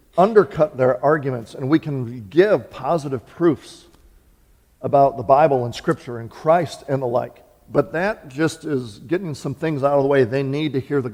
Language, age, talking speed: English, 50-69, 190 wpm